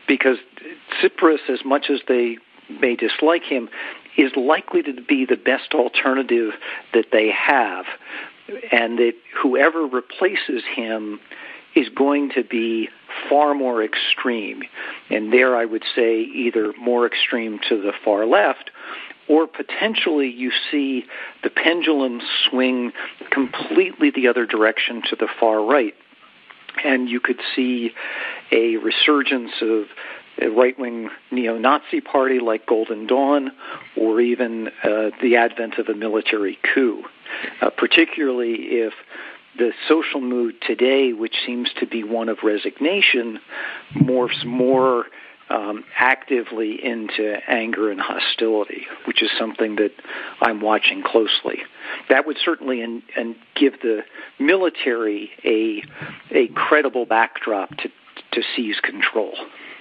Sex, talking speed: male, 125 wpm